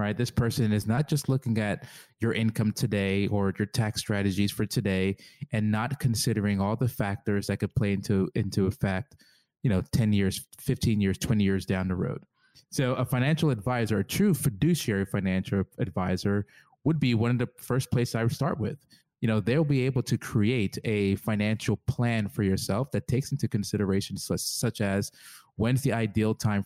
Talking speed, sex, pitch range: 185 wpm, male, 105-130 Hz